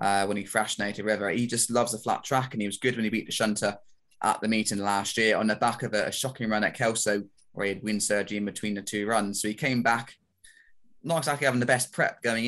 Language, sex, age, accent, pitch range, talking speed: English, male, 20-39, British, 105-115 Hz, 265 wpm